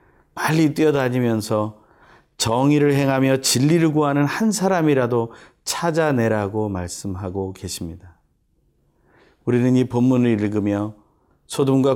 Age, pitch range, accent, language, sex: 30-49, 95-130 Hz, native, Korean, male